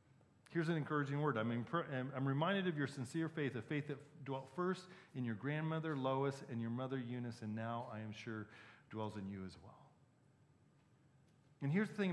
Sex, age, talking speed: male, 40-59, 200 wpm